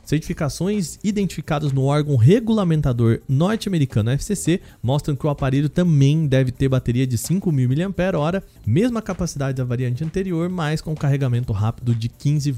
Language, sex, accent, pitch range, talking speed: Portuguese, male, Brazilian, 130-175 Hz, 140 wpm